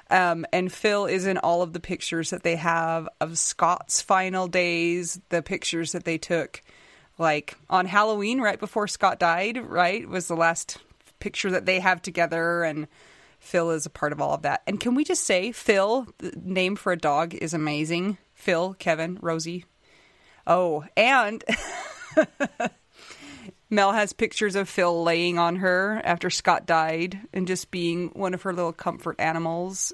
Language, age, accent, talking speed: English, 30-49, American, 170 wpm